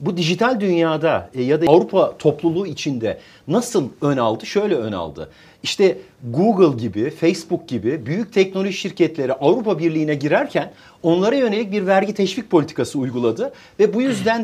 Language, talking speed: Turkish, 145 wpm